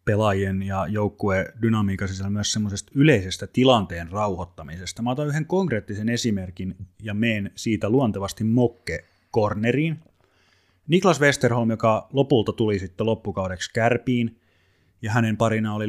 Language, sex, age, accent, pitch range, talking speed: Finnish, male, 30-49, native, 95-120 Hz, 115 wpm